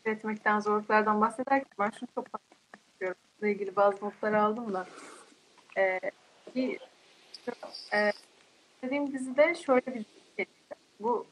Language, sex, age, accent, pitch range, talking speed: Turkish, female, 30-49, native, 205-280 Hz, 105 wpm